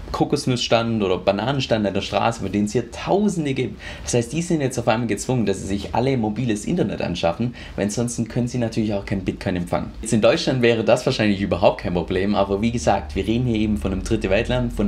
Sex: male